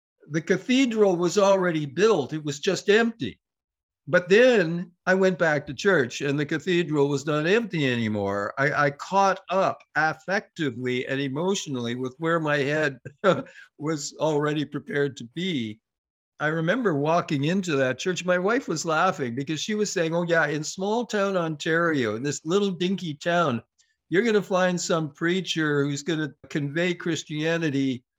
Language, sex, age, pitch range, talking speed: English, male, 60-79, 145-185 Hz, 160 wpm